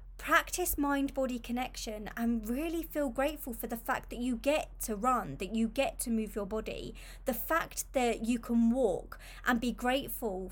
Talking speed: 175 wpm